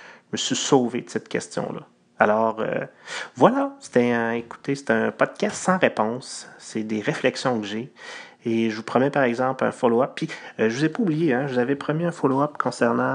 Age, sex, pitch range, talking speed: 30-49, male, 115-145 Hz, 210 wpm